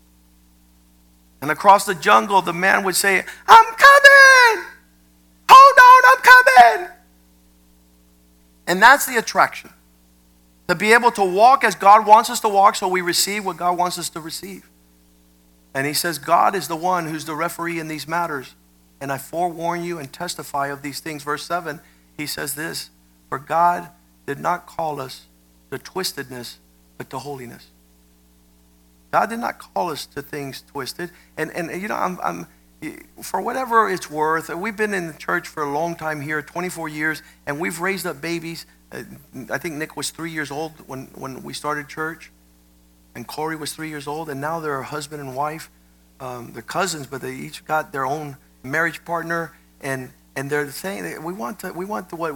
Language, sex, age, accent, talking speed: English, male, 50-69, American, 180 wpm